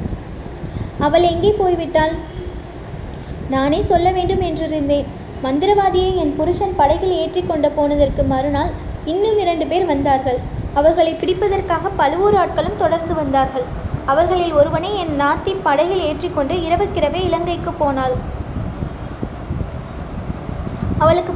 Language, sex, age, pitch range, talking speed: Tamil, female, 20-39, 300-370 Hz, 100 wpm